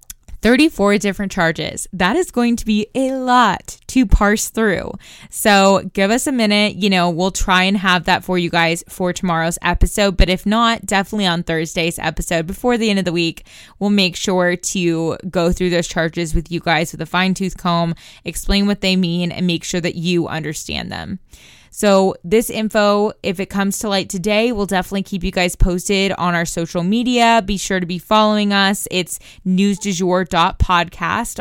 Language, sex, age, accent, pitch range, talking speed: English, female, 20-39, American, 170-205 Hz, 185 wpm